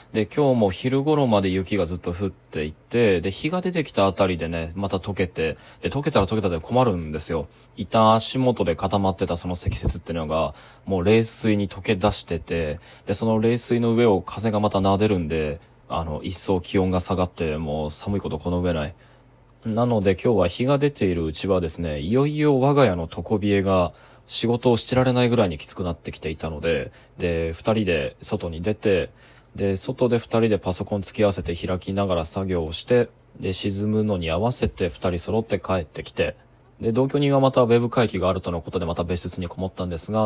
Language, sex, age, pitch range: Japanese, male, 20-39, 85-115 Hz